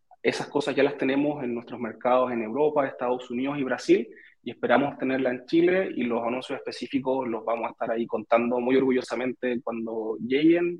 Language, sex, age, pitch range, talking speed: Spanish, male, 30-49, 120-165 Hz, 185 wpm